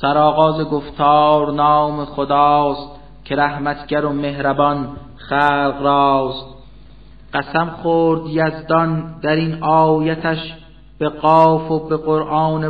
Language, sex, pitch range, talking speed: Persian, male, 150-160 Hz, 100 wpm